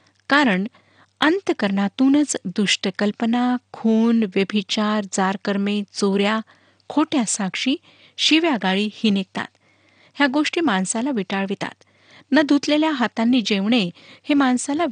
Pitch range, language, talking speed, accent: 195-265 Hz, Marathi, 80 wpm, native